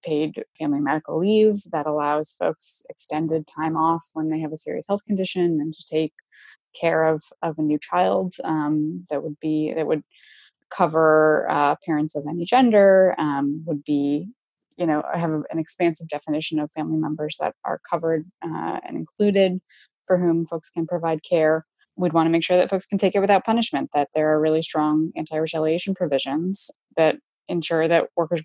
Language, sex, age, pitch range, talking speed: English, female, 20-39, 155-180 Hz, 180 wpm